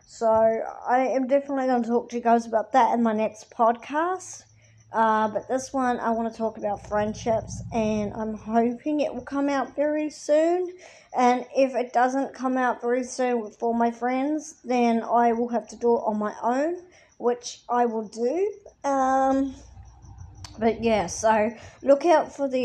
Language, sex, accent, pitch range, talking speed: English, male, Australian, 220-260 Hz, 180 wpm